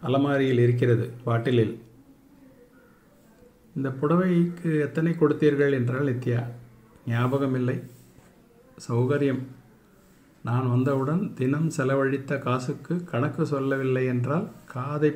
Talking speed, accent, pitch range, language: 80 wpm, native, 120-150 Hz, Tamil